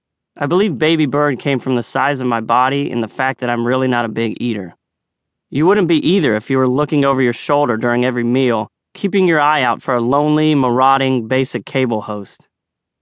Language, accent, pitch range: English, American, 115-145 Hz